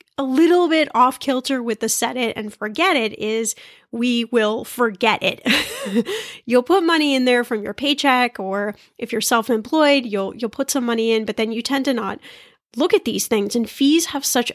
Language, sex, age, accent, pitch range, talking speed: English, female, 10-29, American, 225-275 Hz, 200 wpm